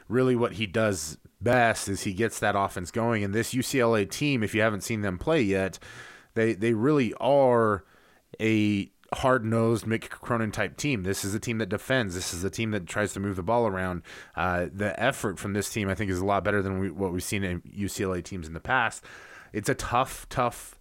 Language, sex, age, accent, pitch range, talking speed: English, male, 20-39, American, 95-115 Hz, 215 wpm